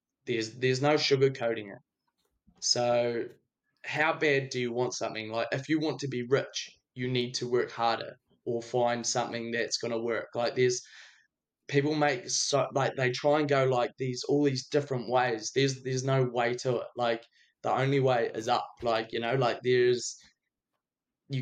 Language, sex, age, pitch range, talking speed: English, male, 20-39, 115-135 Hz, 185 wpm